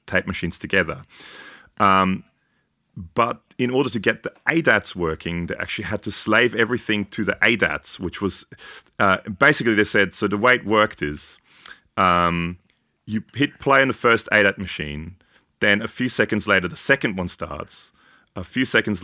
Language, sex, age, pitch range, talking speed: English, male, 30-49, 90-120 Hz, 170 wpm